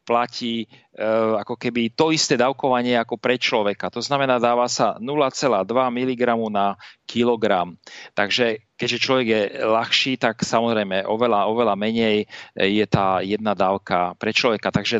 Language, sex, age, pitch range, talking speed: Slovak, male, 40-59, 105-125 Hz, 135 wpm